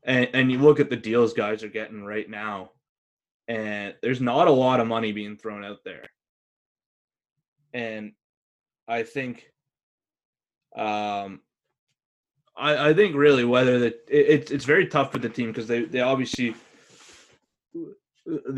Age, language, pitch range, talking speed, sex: 20-39, English, 110-125 Hz, 150 wpm, male